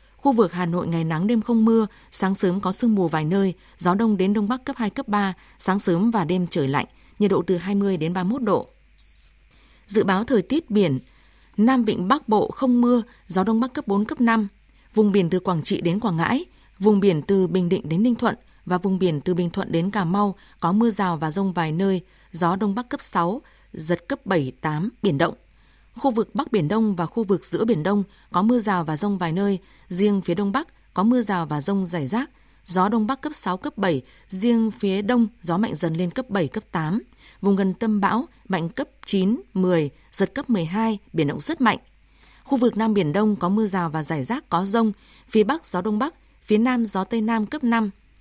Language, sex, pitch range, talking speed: Vietnamese, female, 180-230 Hz, 230 wpm